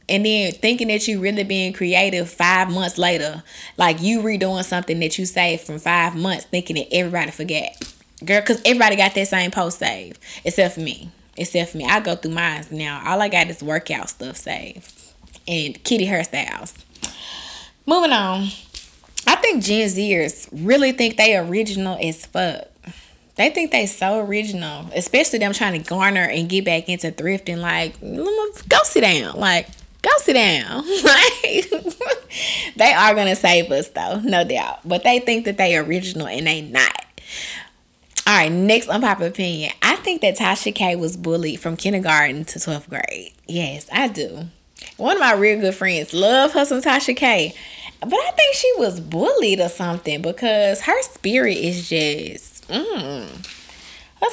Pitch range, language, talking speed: 170-220 Hz, English, 170 wpm